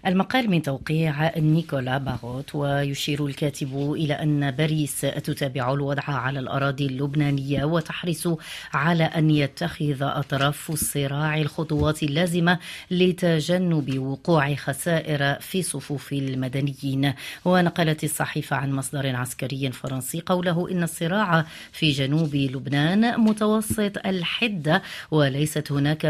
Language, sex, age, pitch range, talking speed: Arabic, female, 30-49, 140-175 Hz, 105 wpm